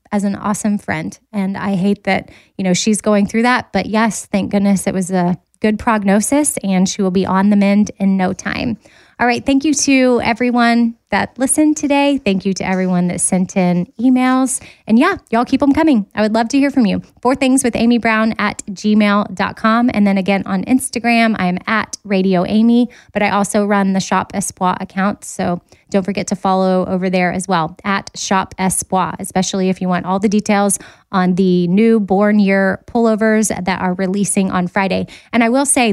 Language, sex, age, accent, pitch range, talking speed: English, female, 20-39, American, 190-230 Hz, 205 wpm